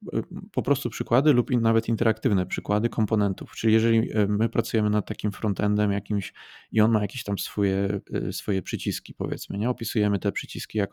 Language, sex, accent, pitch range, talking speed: Polish, male, native, 100-115 Hz, 165 wpm